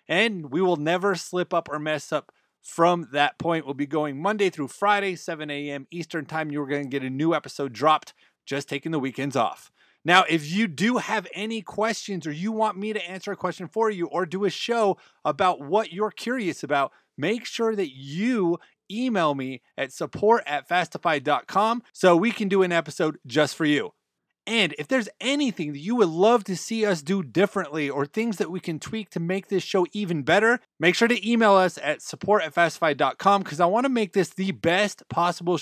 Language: English